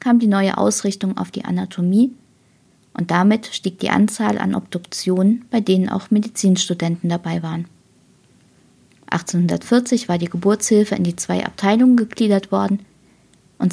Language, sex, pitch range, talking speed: German, female, 175-220 Hz, 135 wpm